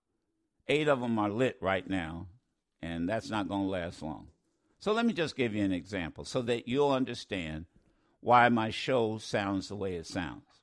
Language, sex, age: English, male, 60-79